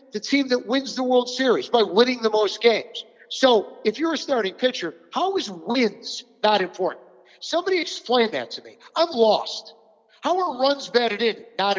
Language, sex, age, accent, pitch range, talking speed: English, male, 50-69, American, 225-305 Hz, 185 wpm